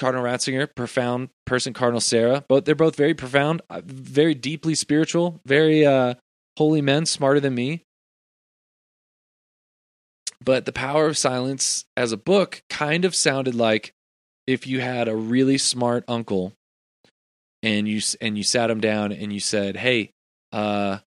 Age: 20-39